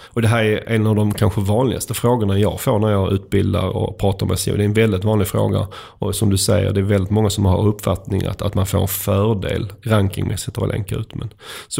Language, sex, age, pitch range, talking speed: Swedish, male, 30-49, 100-115 Hz, 250 wpm